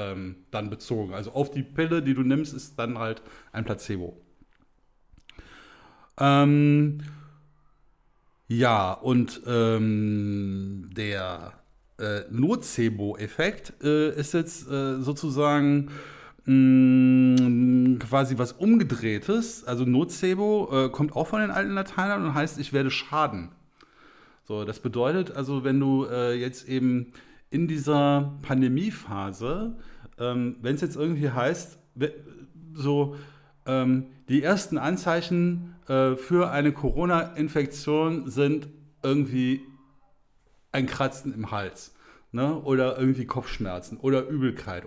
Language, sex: German, male